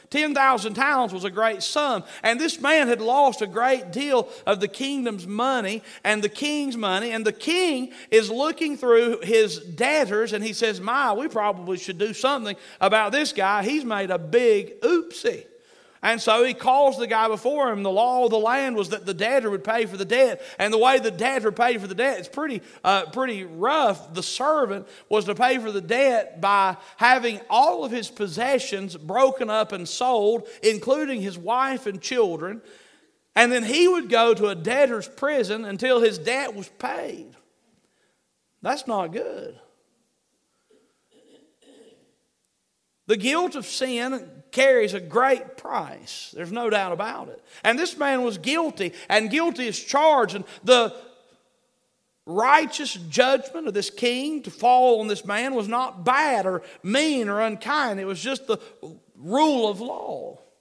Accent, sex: American, male